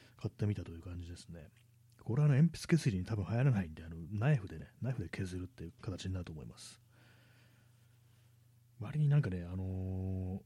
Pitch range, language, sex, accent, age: 95-120 Hz, Japanese, male, native, 30-49